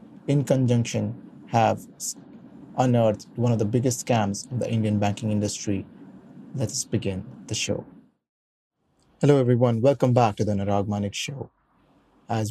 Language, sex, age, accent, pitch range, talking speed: English, male, 30-49, Indian, 110-125 Hz, 130 wpm